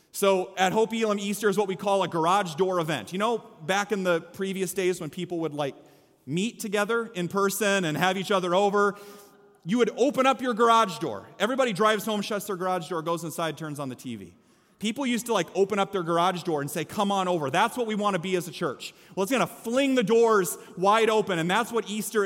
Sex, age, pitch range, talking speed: male, 30-49, 180-225 Hz, 240 wpm